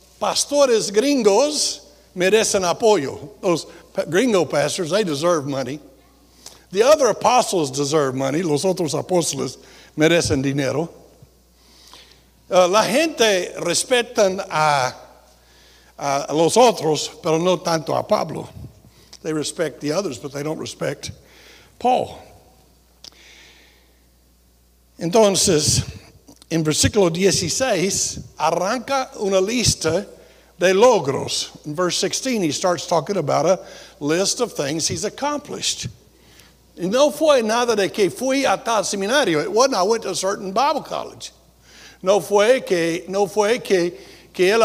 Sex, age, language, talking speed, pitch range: male, 60-79, Spanish, 120 wpm, 150-235 Hz